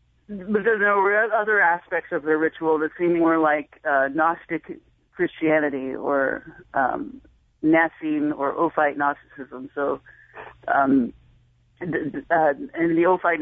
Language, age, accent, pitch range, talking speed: English, 40-59, American, 145-180 Hz, 130 wpm